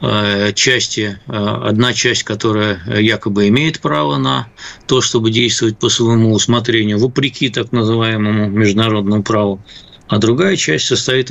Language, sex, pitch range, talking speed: Russian, male, 105-125 Hz, 120 wpm